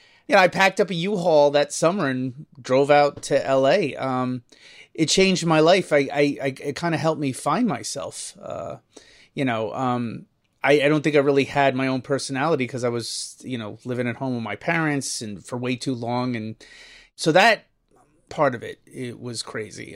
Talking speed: 200 wpm